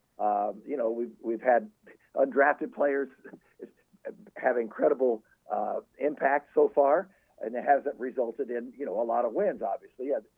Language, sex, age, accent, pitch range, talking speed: English, male, 50-69, American, 120-165 Hz, 150 wpm